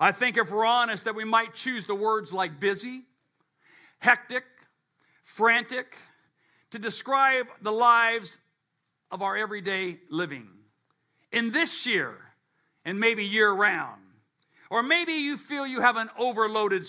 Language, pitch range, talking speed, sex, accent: English, 195-255 Hz, 135 wpm, male, American